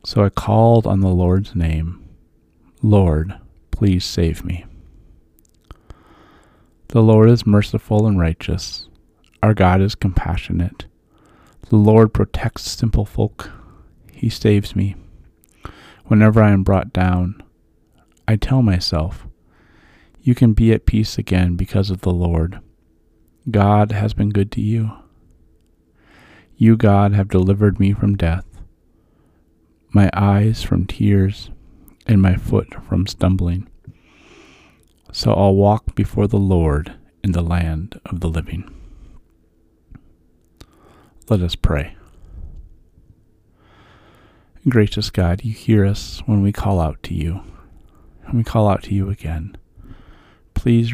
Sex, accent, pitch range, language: male, American, 85-105 Hz, English